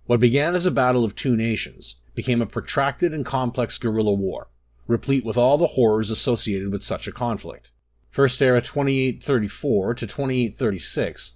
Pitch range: 105-140 Hz